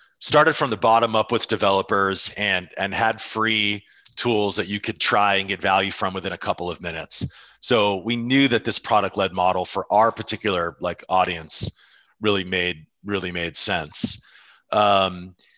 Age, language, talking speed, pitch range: 40-59, English, 165 wpm, 100-120 Hz